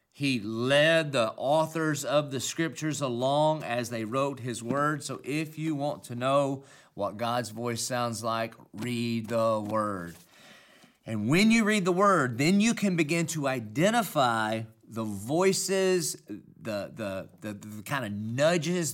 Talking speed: 155 wpm